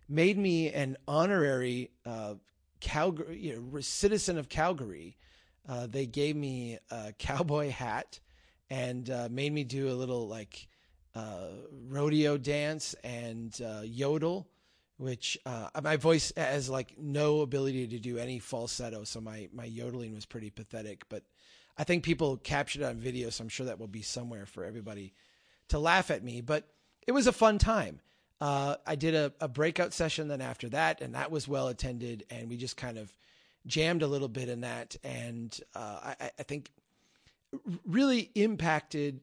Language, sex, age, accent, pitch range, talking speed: English, male, 30-49, American, 115-150 Hz, 170 wpm